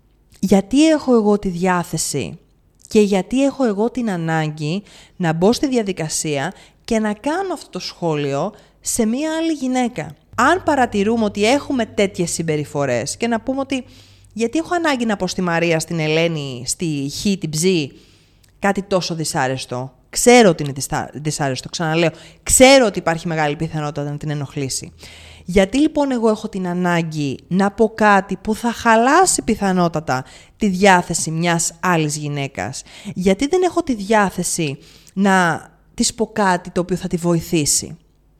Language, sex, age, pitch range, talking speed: Greek, female, 30-49, 150-215 Hz, 150 wpm